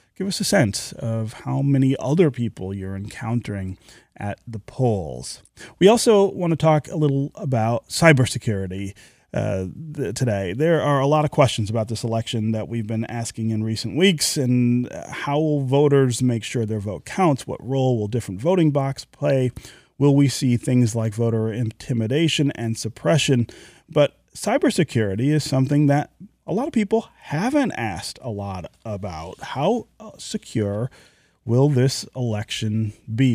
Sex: male